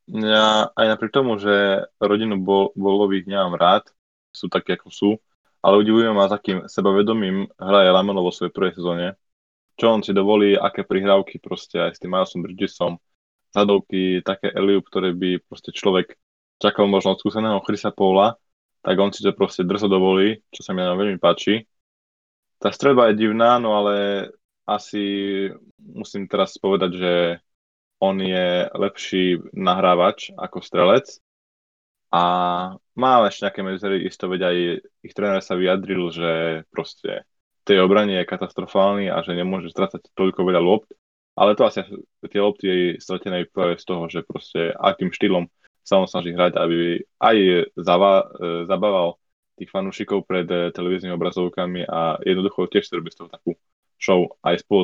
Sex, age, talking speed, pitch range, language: male, 20-39, 155 wpm, 90-100 Hz, Slovak